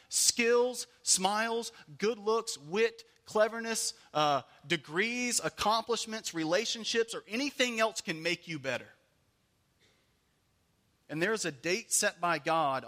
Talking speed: 115 wpm